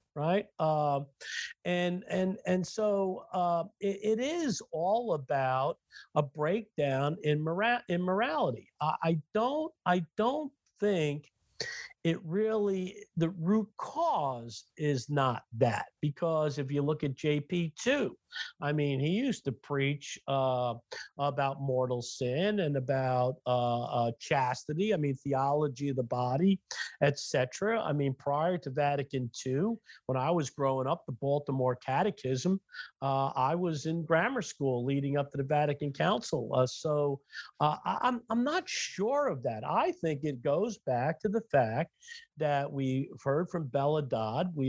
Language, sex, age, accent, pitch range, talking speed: English, male, 50-69, American, 135-180 Hz, 150 wpm